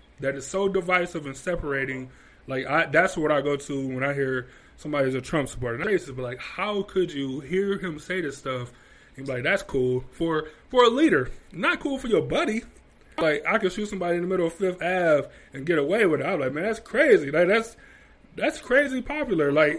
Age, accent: 20-39, American